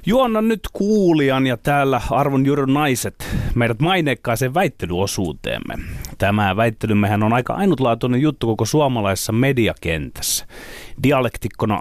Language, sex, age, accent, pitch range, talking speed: Finnish, male, 30-49, native, 105-150 Hz, 105 wpm